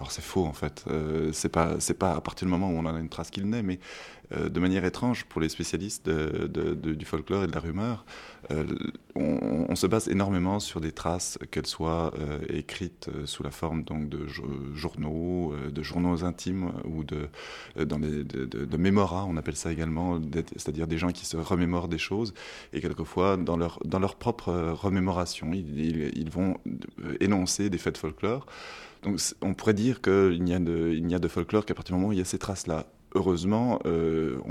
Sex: male